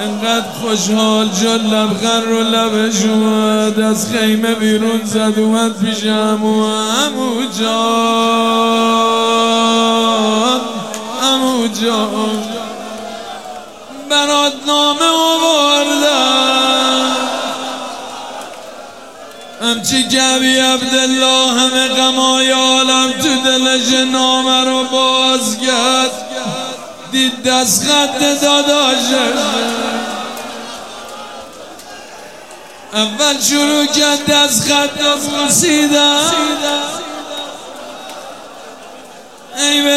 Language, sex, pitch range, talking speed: Persian, male, 230-285 Hz, 55 wpm